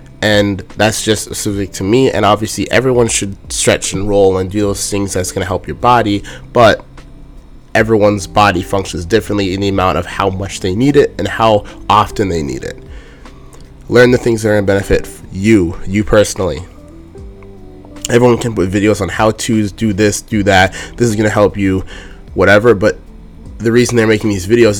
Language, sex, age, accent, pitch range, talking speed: English, male, 20-39, American, 95-105 Hz, 190 wpm